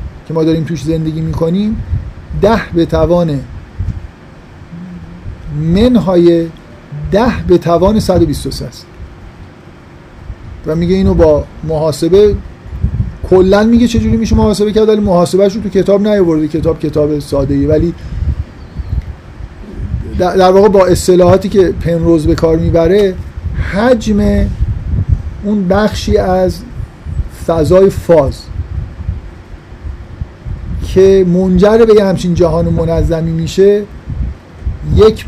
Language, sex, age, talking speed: Persian, male, 50-69, 105 wpm